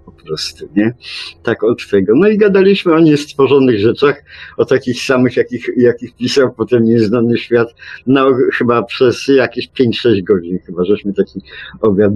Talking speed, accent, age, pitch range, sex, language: 155 wpm, native, 50-69, 110-135 Hz, male, Polish